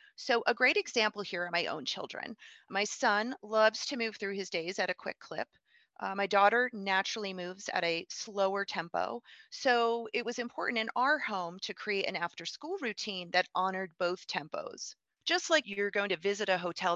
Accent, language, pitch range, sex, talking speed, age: American, English, 180-240 Hz, female, 190 wpm, 40-59